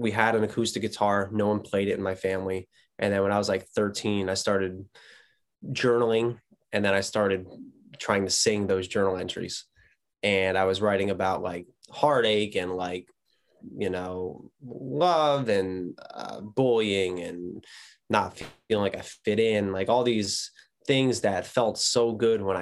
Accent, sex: American, male